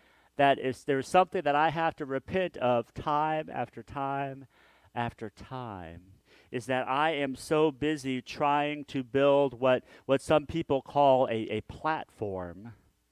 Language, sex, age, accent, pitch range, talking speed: English, male, 50-69, American, 115-150 Hz, 145 wpm